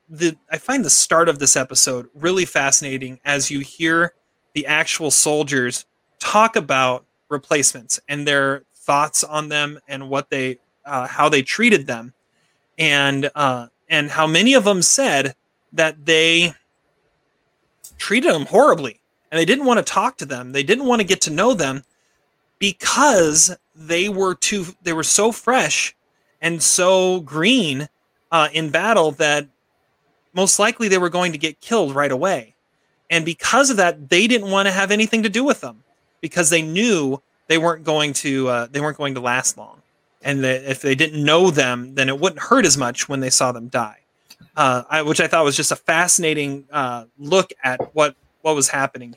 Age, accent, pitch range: 30-49, American, 140-180 Hz